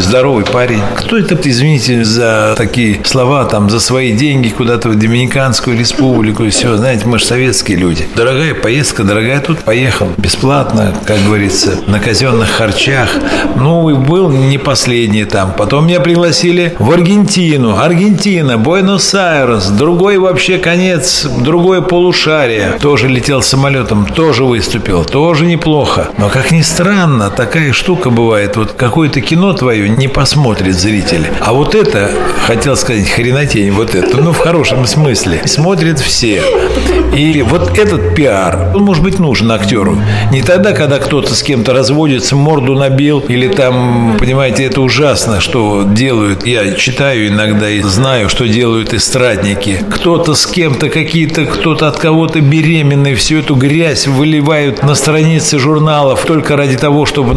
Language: Russian